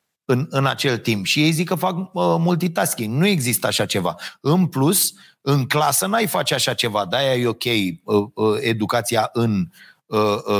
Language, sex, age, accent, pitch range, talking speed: Romanian, male, 30-49, native, 130-180 Hz, 180 wpm